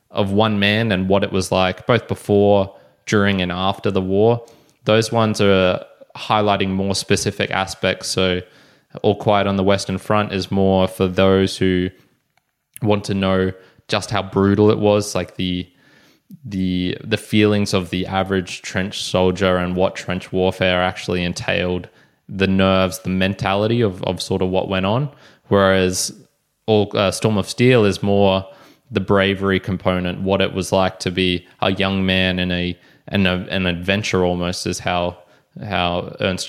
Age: 20-39